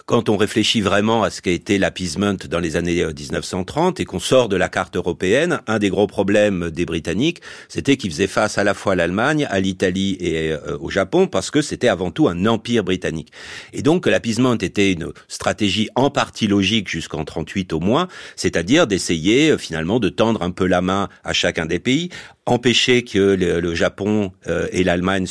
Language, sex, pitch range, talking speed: French, male, 90-120 Hz, 190 wpm